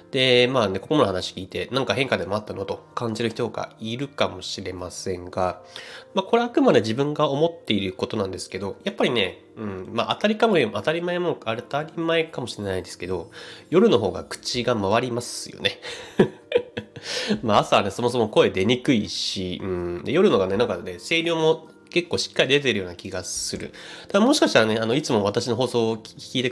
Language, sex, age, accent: Japanese, male, 30-49, native